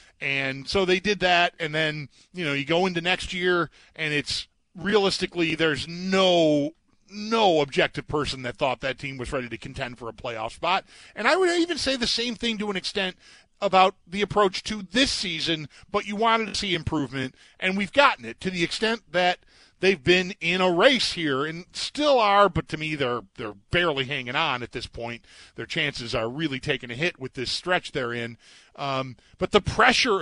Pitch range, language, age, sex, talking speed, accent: 145-205 Hz, English, 40-59, male, 200 wpm, American